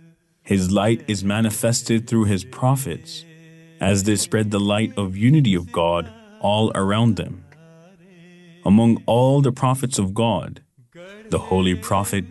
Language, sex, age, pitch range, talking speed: English, male, 30-49, 95-140 Hz, 135 wpm